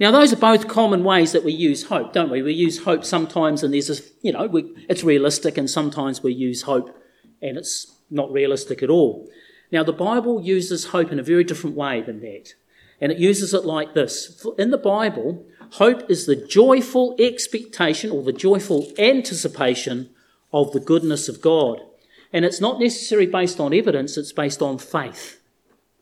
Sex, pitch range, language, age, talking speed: male, 145-195 Hz, English, 40-59, 185 wpm